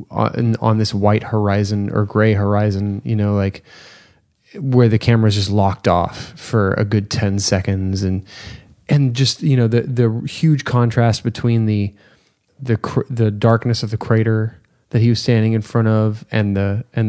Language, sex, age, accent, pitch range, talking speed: English, male, 20-39, American, 105-120 Hz, 175 wpm